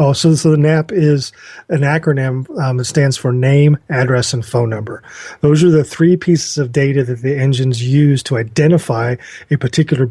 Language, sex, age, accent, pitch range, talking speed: English, male, 30-49, American, 130-155 Hz, 190 wpm